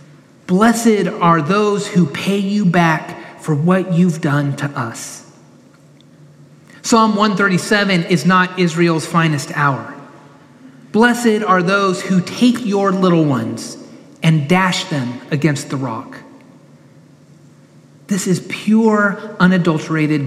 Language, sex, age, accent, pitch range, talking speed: English, male, 30-49, American, 150-200 Hz, 115 wpm